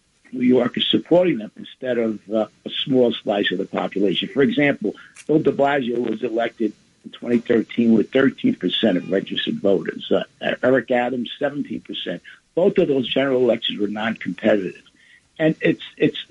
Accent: American